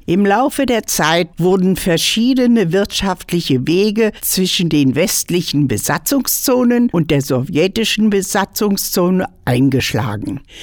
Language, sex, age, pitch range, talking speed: German, female, 60-79, 155-210 Hz, 95 wpm